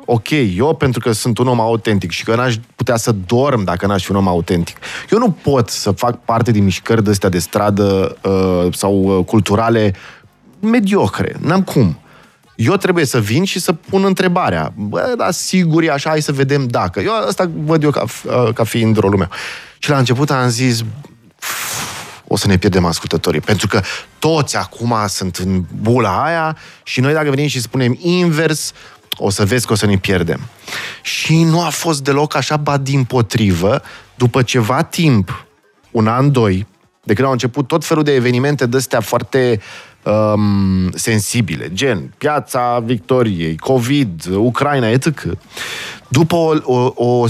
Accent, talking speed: native, 170 wpm